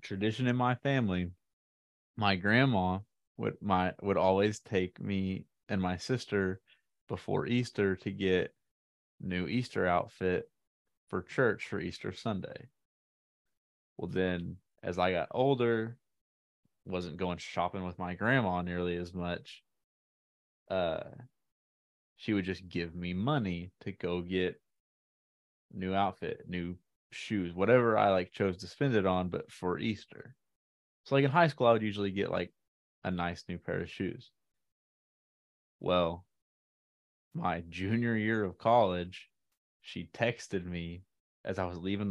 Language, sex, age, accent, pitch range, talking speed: English, male, 20-39, American, 90-105 Hz, 135 wpm